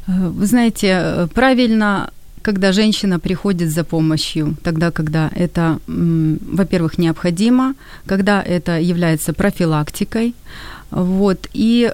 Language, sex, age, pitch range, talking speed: Ukrainian, female, 30-49, 170-215 Hz, 95 wpm